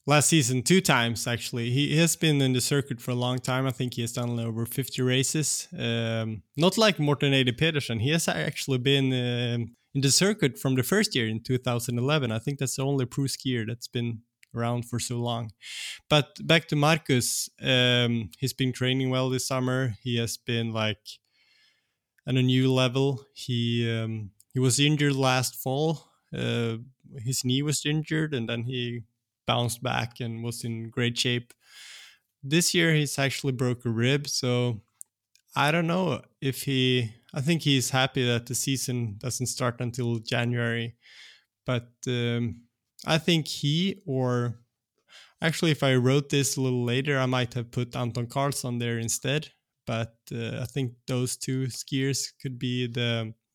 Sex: male